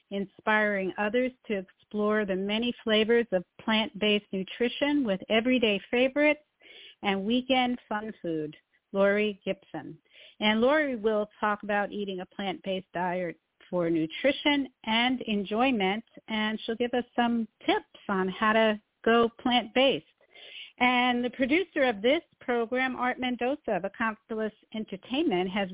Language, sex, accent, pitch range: English, female, American, 195-245 Hz